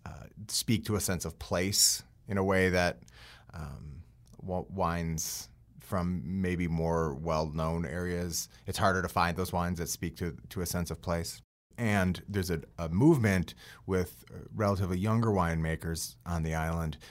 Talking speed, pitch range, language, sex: 155 wpm, 80-100 Hz, English, male